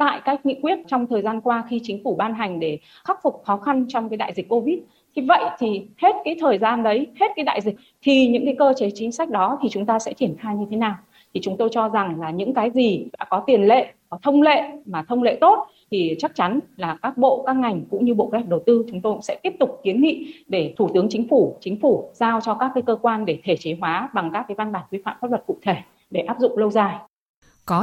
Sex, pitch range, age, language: female, 200-260 Hz, 20-39, Vietnamese